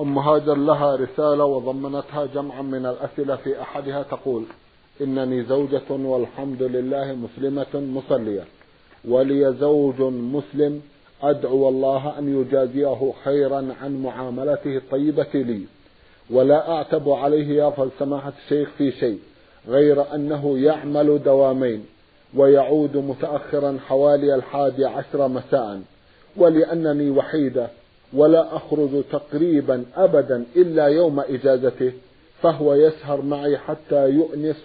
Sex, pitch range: male, 135-150 Hz